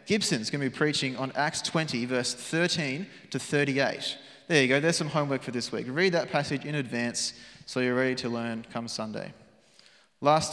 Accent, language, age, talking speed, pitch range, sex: Australian, English, 20-39, 190 wpm, 130-170 Hz, male